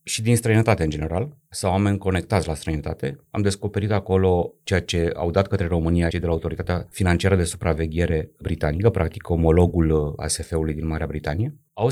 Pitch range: 85-115 Hz